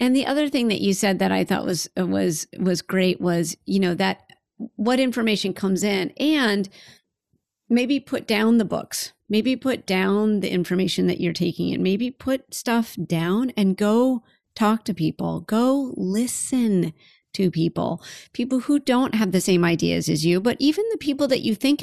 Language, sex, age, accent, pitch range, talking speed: English, female, 40-59, American, 180-235 Hz, 180 wpm